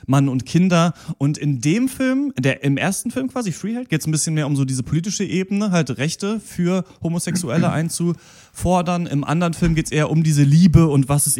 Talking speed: 210 wpm